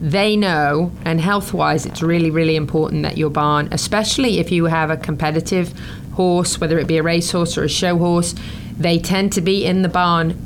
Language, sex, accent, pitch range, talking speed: English, female, British, 160-185 Hz, 200 wpm